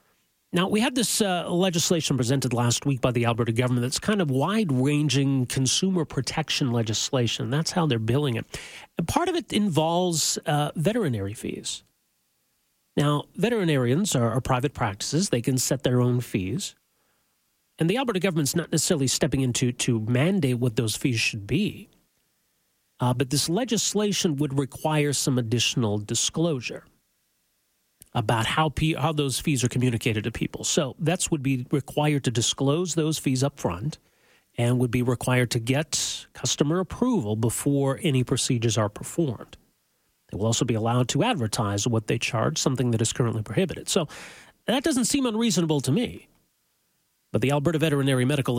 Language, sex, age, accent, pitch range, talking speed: English, male, 40-59, American, 125-160 Hz, 160 wpm